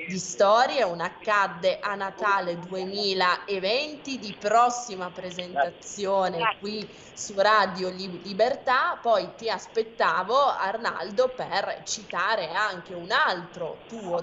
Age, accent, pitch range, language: 20-39, native, 180-220 Hz, Italian